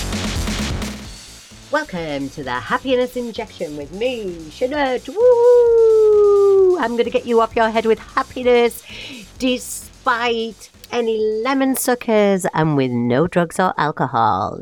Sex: female